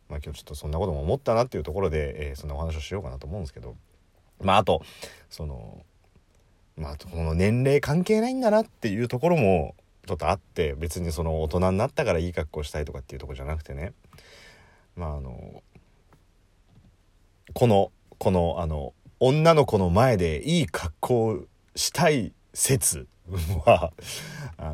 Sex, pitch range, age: male, 80-115 Hz, 40-59